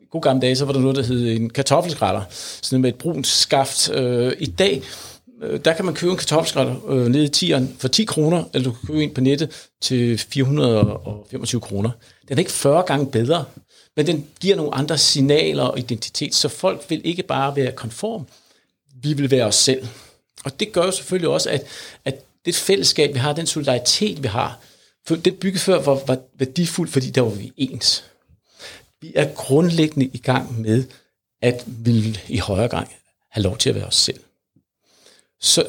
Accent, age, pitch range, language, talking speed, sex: native, 60-79, 125-155 Hz, Danish, 190 wpm, male